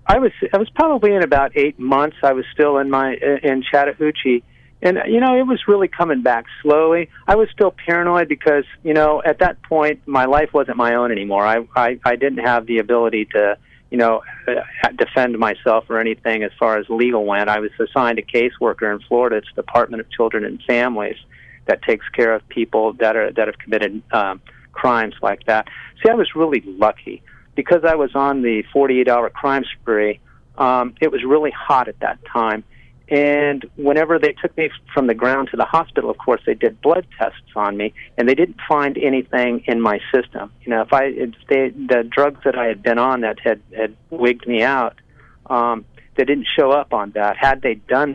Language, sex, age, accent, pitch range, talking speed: English, male, 50-69, American, 115-150 Hz, 205 wpm